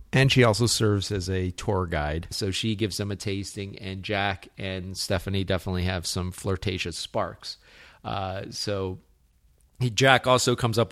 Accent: American